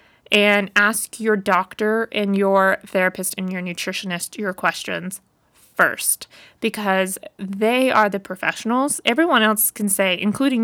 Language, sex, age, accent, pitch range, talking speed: English, female, 20-39, American, 195-230 Hz, 130 wpm